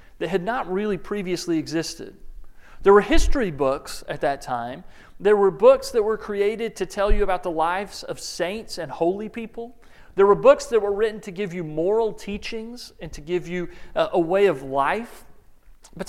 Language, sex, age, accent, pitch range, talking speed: English, male, 40-59, American, 155-215 Hz, 185 wpm